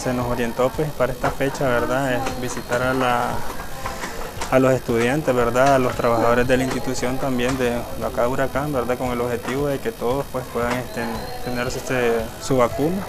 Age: 20-39